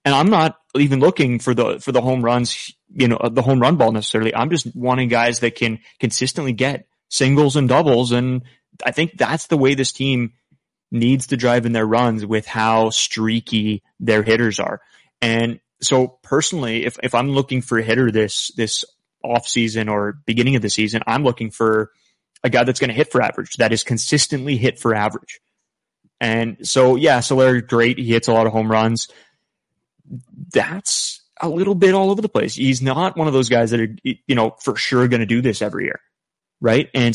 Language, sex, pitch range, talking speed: English, male, 115-135 Hz, 200 wpm